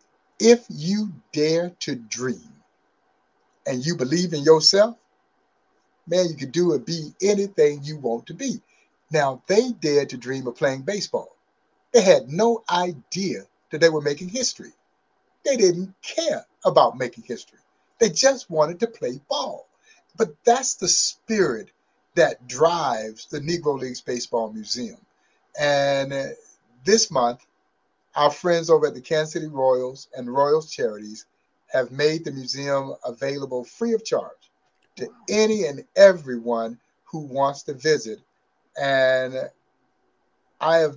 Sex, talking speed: male, 140 wpm